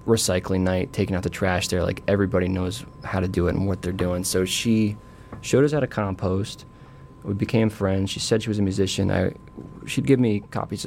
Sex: male